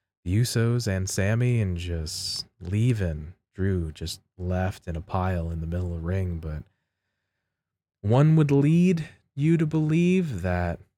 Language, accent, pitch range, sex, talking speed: English, American, 95-125 Hz, male, 150 wpm